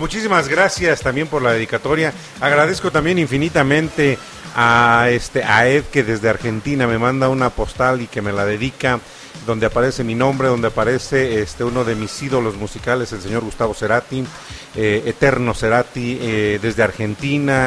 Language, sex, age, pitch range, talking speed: Spanish, male, 40-59, 115-145 Hz, 160 wpm